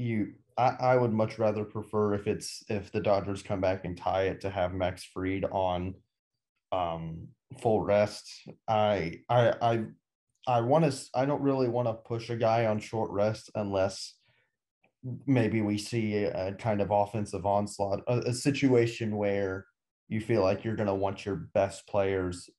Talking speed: 175 wpm